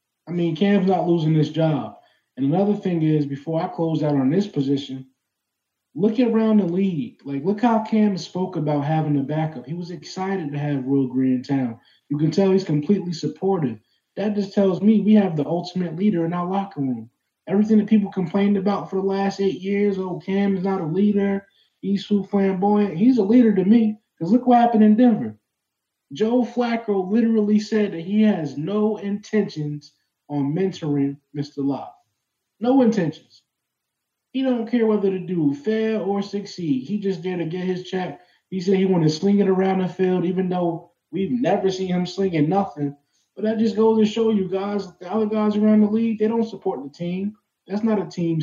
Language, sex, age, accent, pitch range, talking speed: English, male, 20-39, American, 150-205 Hz, 200 wpm